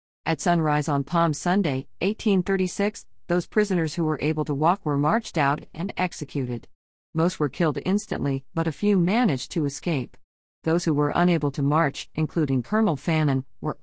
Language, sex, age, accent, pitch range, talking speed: English, female, 50-69, American, 145-190 Hz, 165 wpm